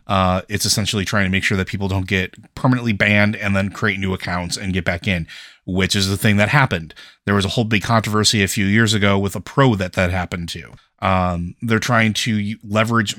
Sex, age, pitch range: male, 30-49, 95-110 Hz